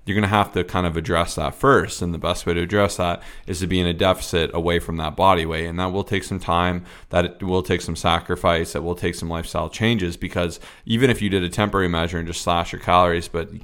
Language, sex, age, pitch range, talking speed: English, male, 20-39, 85-95 Hz, 260 wpm